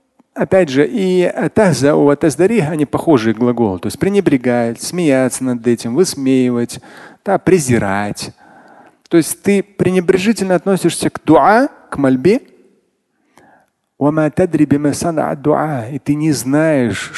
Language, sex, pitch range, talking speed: Russian, male, 130-185 Hz, 95 wpm